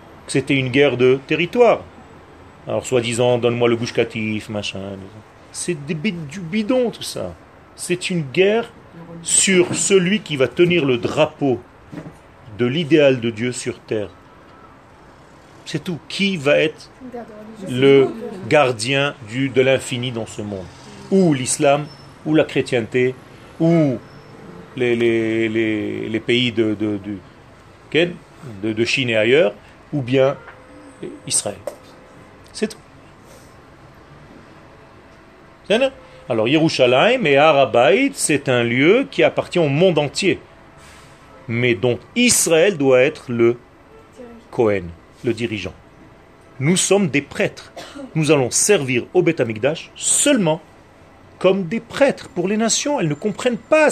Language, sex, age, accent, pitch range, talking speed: French, male, 40-59, French, 120-185 Hz, 125 wpm